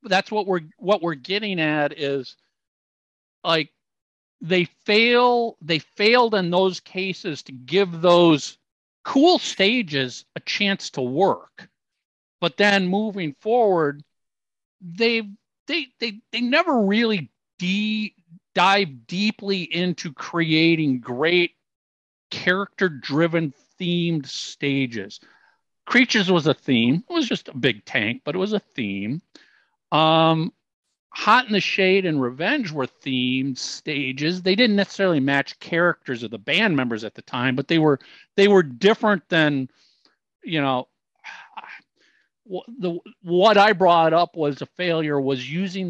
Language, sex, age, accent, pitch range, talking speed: English, male, 50-69, American, 135-195 Hz, 130 wpm